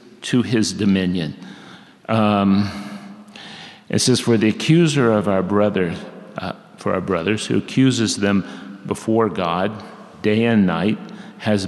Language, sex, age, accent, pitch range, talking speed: English, male, 50-69, American, 100-130 Hz, 130 wpm